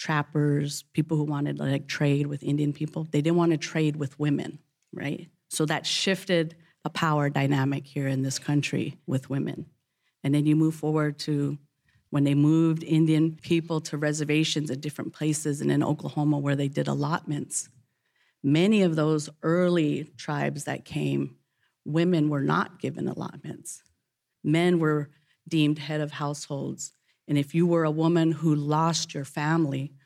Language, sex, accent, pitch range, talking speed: English, female, American, 145-160 Hz, 160 wpm